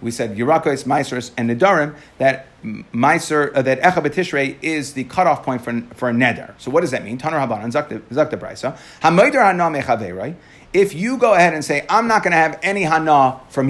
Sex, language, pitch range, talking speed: male, English, 135-185 Hz, 195 wpm